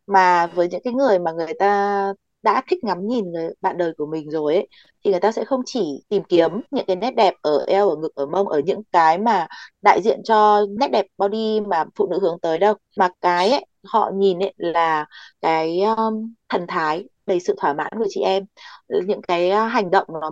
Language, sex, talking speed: Vietnamese, female, 220 wpm